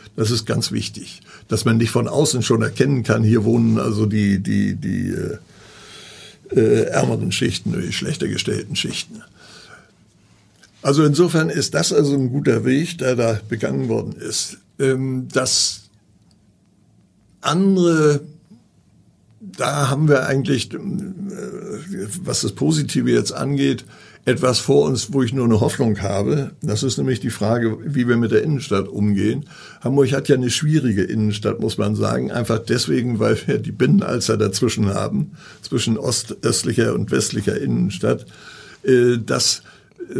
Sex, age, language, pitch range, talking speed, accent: male, 60-79, German, 110-140 Hz, 140 wpm, German